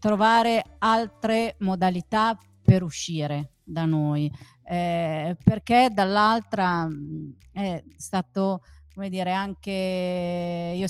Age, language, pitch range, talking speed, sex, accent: 40-59, Italian, 165-205 Hz, 90 wpm, female, native